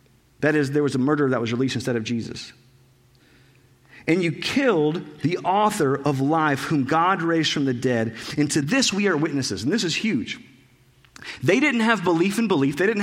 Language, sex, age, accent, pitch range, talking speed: English, male, 40-59, American, 125-190 Hz, 200 wpm